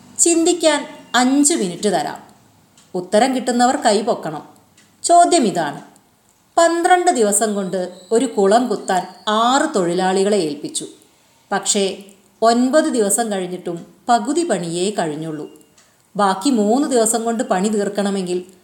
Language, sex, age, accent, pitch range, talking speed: Malayalam, female, 30-49, native, 190-260 Hz, 100 wpm